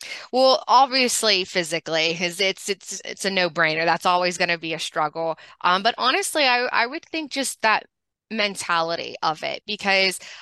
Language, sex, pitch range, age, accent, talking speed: English, female, 175-240 Hz, 20-39, American, 165 wpm